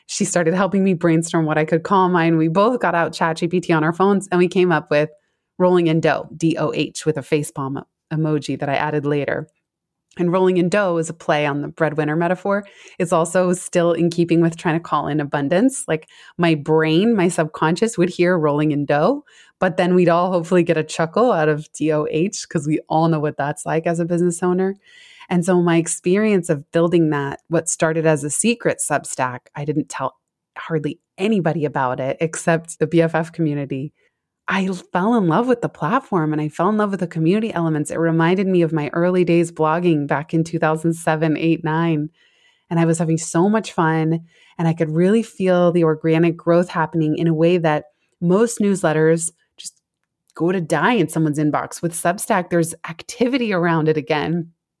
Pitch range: 155-180 Hz